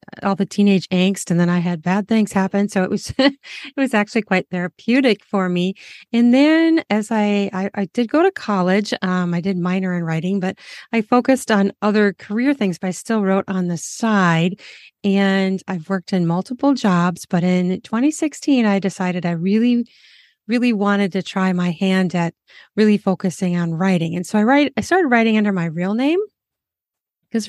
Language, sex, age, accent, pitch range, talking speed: English, female, 30-49, American, 185-230 Hz, 190 wpm